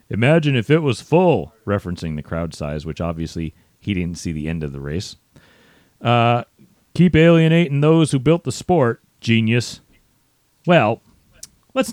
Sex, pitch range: male, 85-130 Hz